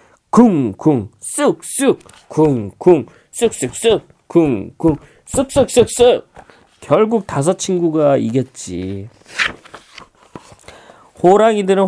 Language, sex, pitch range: Korean, male, 140-220 Hz